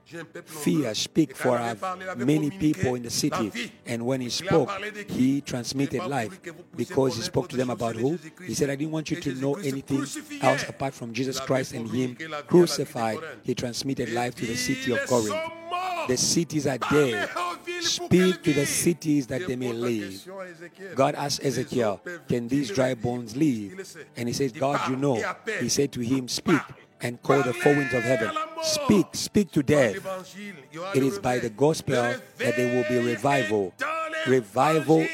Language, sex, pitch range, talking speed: English, male, 125-175 Hz, 170 wpm